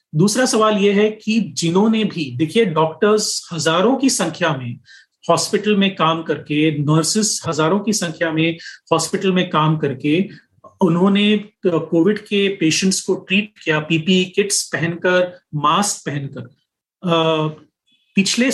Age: 30-49